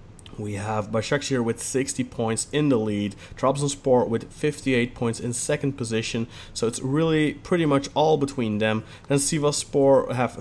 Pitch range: 110-140 Hz